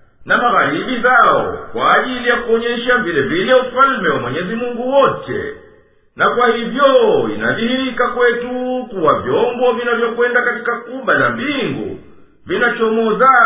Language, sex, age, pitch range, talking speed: Swahili, male, 50-69, 235-265 Hz, 120 wpm